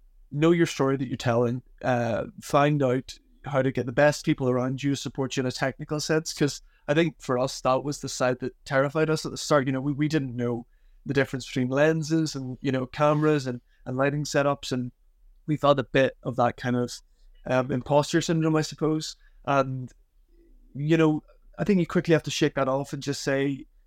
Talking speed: 215 wpm